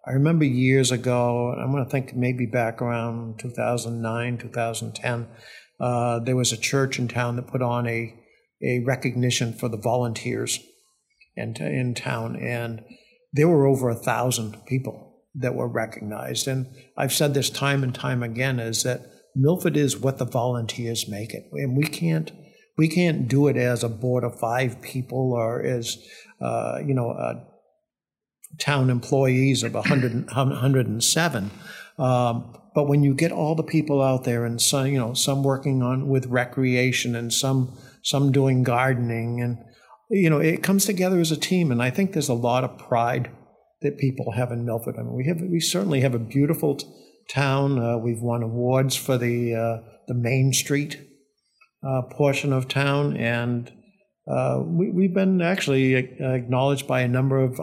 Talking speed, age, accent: 175 wpm, 60-79, American